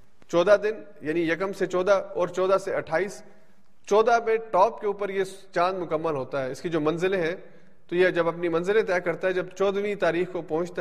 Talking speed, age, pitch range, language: 210 wpm, 30-49, 150-190 Hz, Urdu